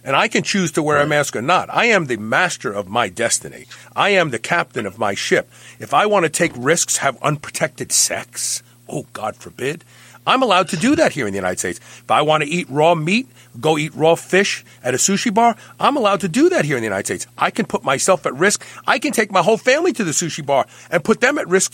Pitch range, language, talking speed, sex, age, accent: 125-190 Hz, English, 255 wpm, male, 50-69, American